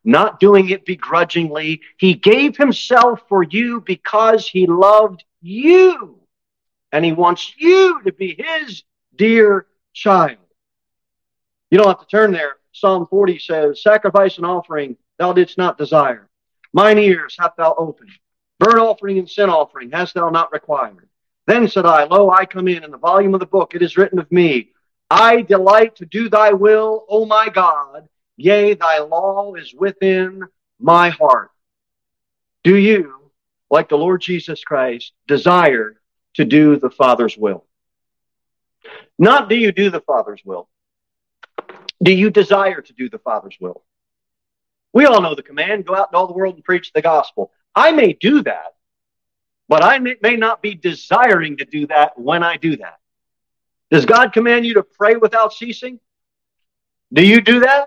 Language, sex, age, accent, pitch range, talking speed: English, male, 50-69, American, 170-215 Hz, 165 wpm